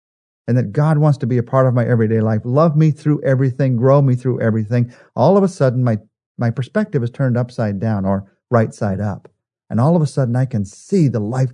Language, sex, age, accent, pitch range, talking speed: English, male, 50-69, American, 110-145 Hz, 235 wpm